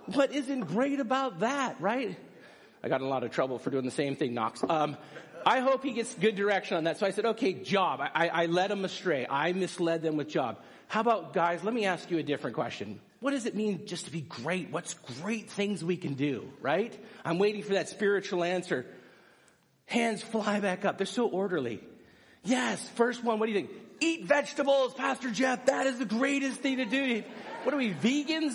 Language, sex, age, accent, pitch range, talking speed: English, male, 40-59, American, 170-260 Hz, 220 wpm